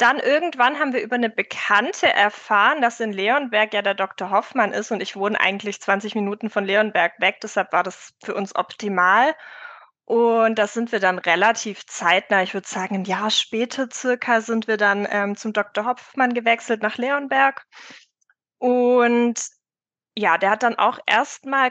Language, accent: German, German